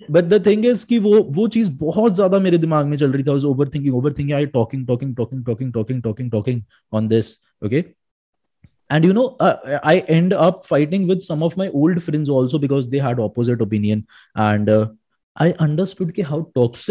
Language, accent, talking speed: Hindi, native, 90 wpm